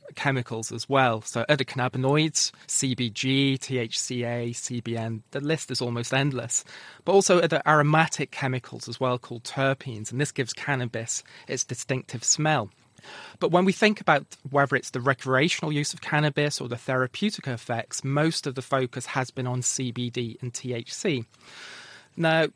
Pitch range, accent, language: 125-155 Hz, British, English